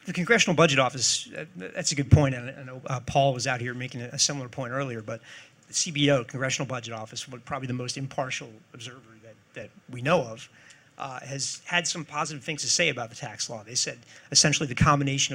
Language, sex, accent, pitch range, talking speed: English, male, American, 125-150 Hz, 205 wpm